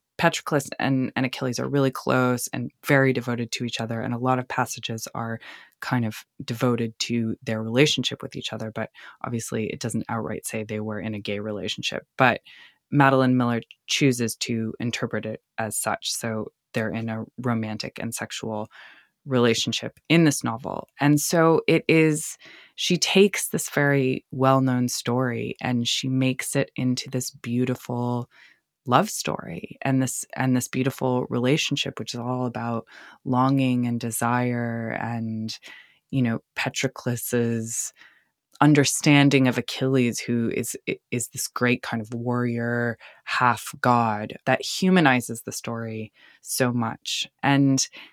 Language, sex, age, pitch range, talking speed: English, female, 20-39, 115-135 Hz, 145 wpm